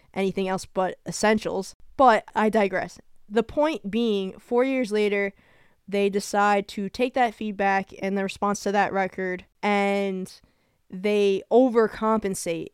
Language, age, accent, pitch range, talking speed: English, 10-29, American, 195-230 Hz, 130 wpm